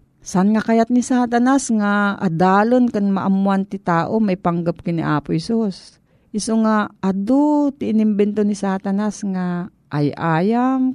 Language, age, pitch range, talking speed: Filipino, 40-59, 170-220 Hz, 130 wpm